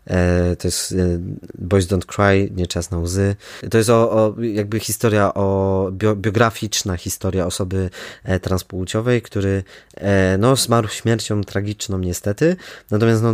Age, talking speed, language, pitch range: 20-39, 140 wpm, Polish, 95-115 Hz